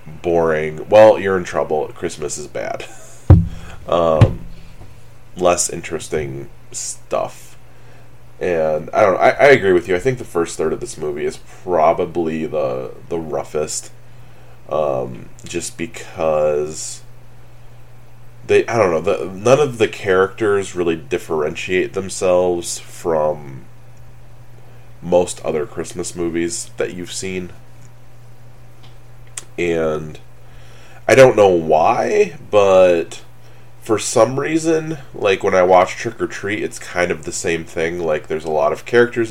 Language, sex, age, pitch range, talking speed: English, male, 20-39, 85-120 Hz, 130 wpm